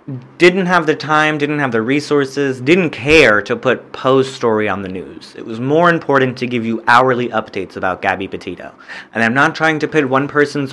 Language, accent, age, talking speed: English, American, 30-49, 205 wpm